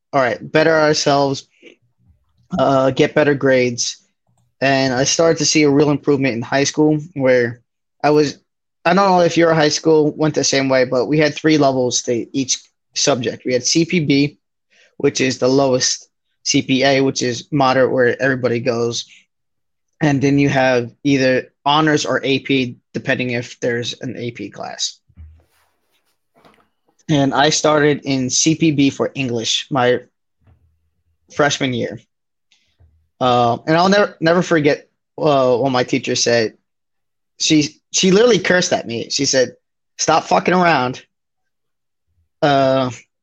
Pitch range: 125-155 Hz